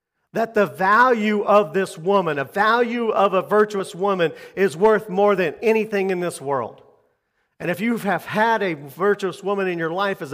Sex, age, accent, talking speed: male, 40-59, American, 185 wpm